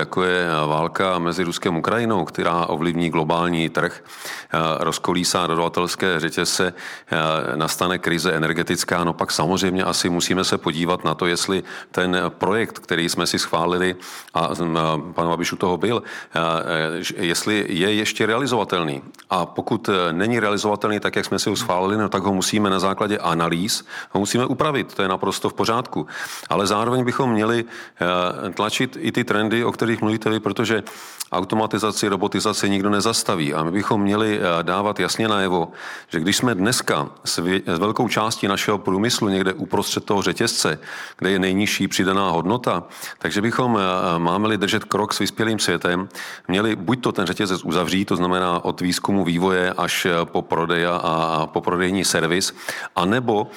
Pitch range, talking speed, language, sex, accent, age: 85-105 Hz, 150 wpm, Czech, male, native, 40-59